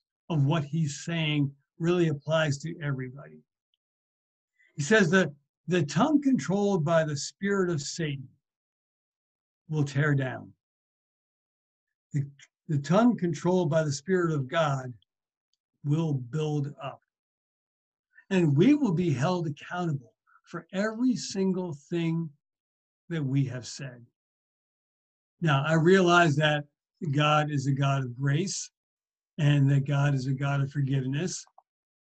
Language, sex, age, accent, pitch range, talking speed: English, male, 60-79, American, 135-175 Hz, 125 wpm